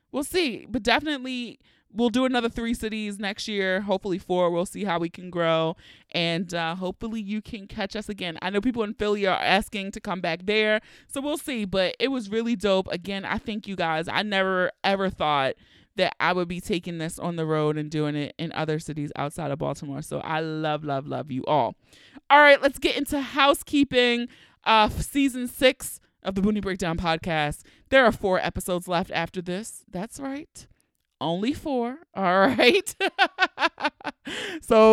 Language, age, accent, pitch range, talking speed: English, 20-39, American, 175-240 Hz, 185 wpm